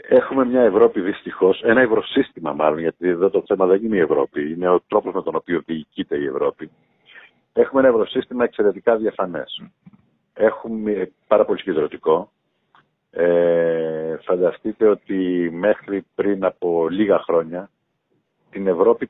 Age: 50-69